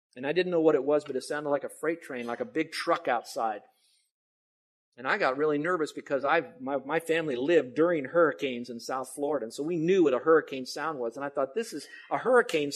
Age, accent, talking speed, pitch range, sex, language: 50-69, American, 240 wpm, 140-180 Hz, male, English